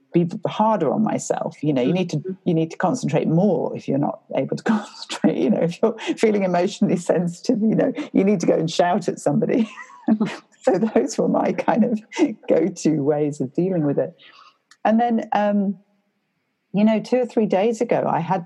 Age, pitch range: 50-69, 150-215 Hz